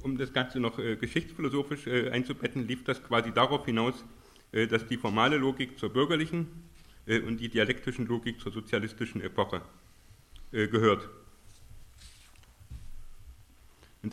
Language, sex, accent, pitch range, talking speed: German, male, German, 105-130 Hz, 130 wpm